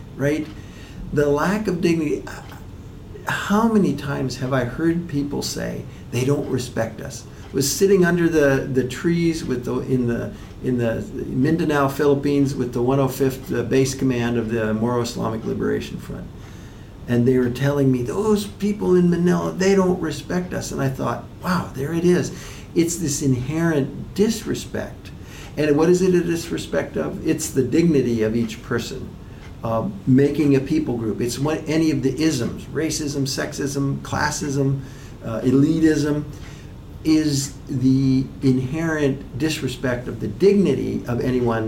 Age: 50-69